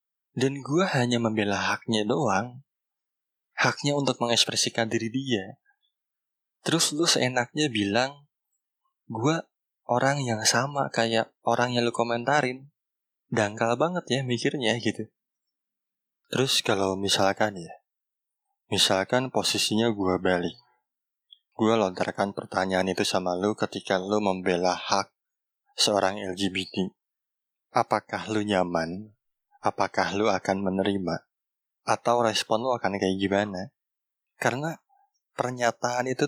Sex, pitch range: male, 105-135 Hz